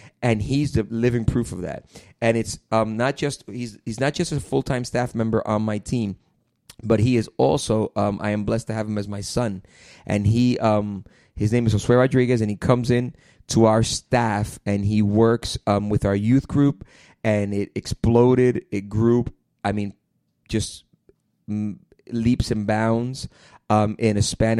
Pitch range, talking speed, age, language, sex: 105-115 Hz, 185 wpm, 30-49, English, male